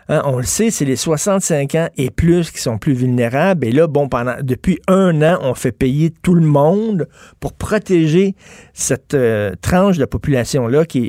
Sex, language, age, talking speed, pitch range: male, French, 50-69, 185 wpm, 130-170 Hz